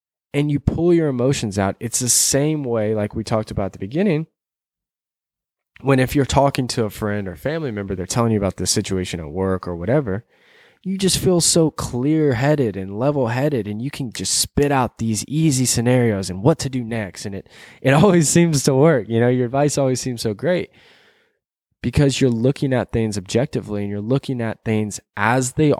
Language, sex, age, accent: English, male, 20-39, American